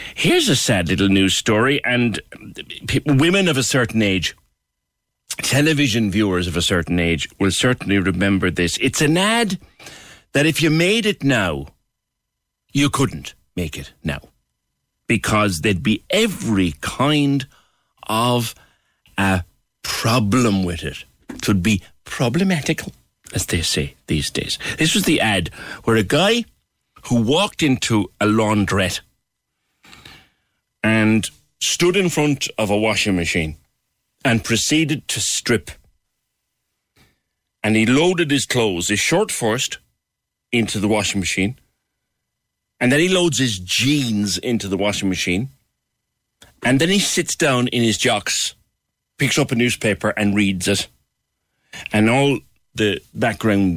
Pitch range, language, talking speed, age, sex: 95-135 Hz, English, 135 wpm, 60-79, male